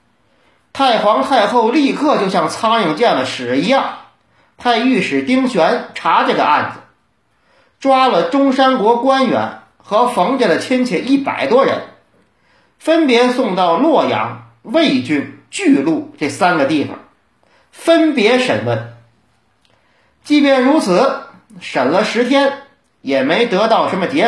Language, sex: Chinese, male